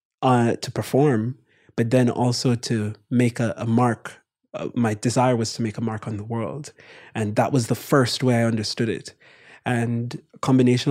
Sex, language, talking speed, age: male, English, 185 wpm, 20-39